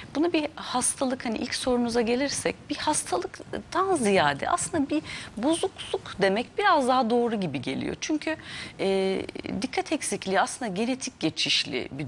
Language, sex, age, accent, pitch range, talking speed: Turkish, female, 40-59, native, 195-275 Hz, 135 wpm